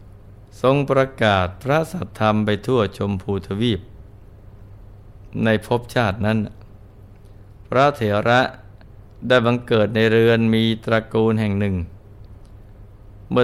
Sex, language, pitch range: male, Thai, 100-115 Hz